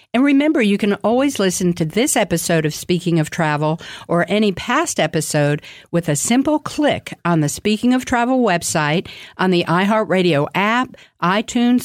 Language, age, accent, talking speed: English, 50-69, American, 160 wpm